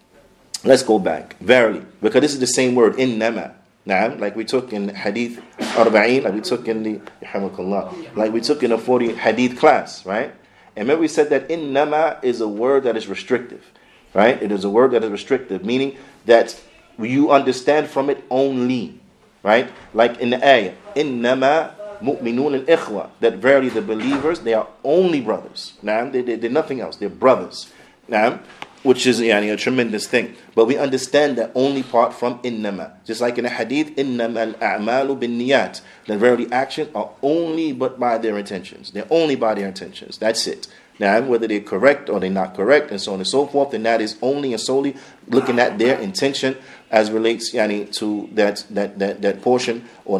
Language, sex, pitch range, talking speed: English, male, 110-135 Hz, 190 wpm